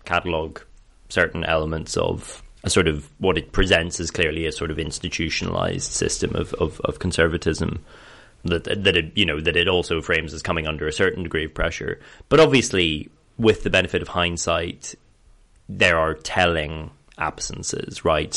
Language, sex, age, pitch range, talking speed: English, male, 20-39, 75-90 Hz, 165 wpm